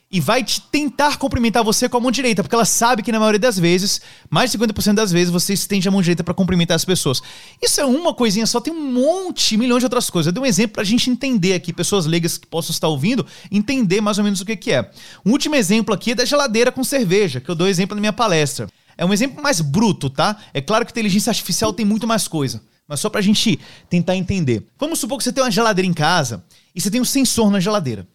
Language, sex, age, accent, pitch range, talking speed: Portuguese, male, 30-49, Brazilian, 175-245 Hz, 255 wpm